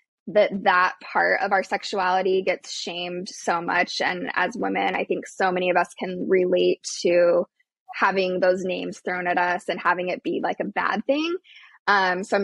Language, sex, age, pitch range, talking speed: English, female, 20-39, 185-240 Hz, 190 wpm